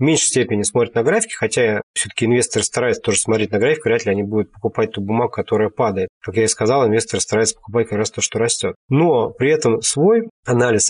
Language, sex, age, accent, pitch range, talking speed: Russian, male, 20-39, native, 110-140 Hz, 220 wpm